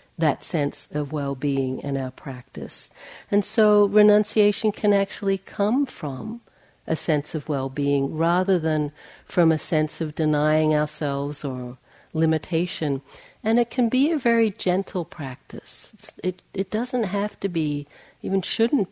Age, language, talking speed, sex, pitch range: 60-79, English, 145 wpm, female, 155-205 Hz